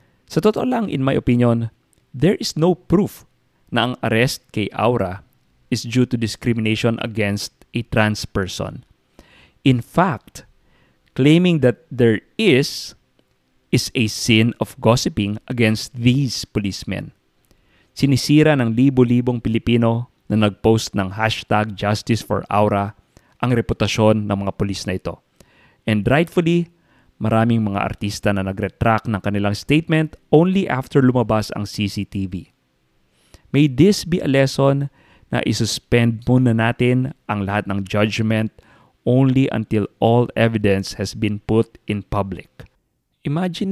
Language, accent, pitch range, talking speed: English, Filipino, 100-125 Hz, 125 wpm